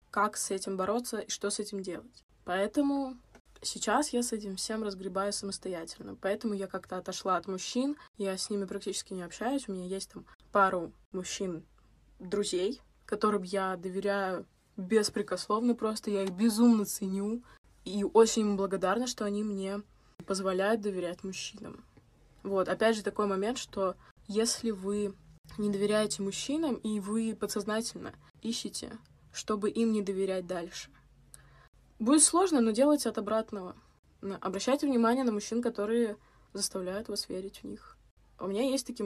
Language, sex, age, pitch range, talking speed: Russian, female, 20-39, 195-225 Hz, 145 wpm